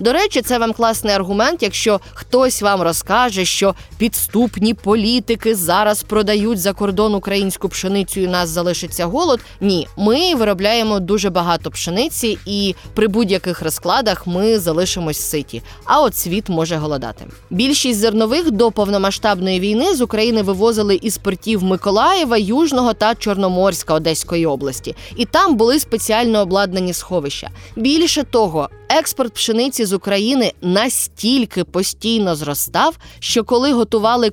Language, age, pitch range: Ukrainian, 20-39, 175-230 Hz